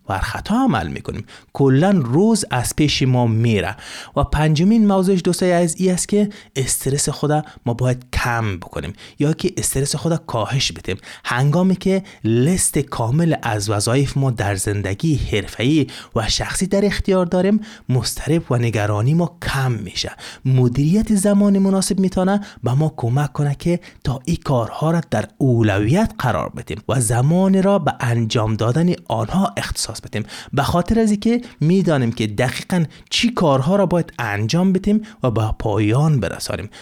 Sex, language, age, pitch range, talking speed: male, Persian, 30-49, 115-175 Hz, 160 wpm